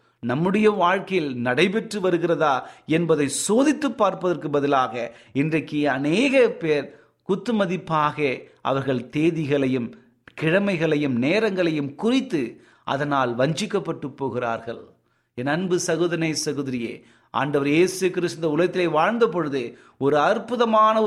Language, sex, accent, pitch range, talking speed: Tamil, male, native, 145-200 Hz, 90 wpm